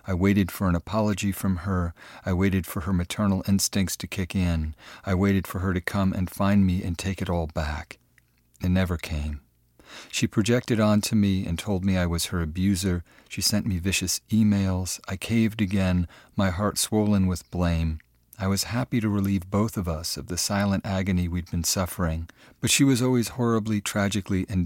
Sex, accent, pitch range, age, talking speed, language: male, American, 90-105 Hz, 40-59, 190 wpm, English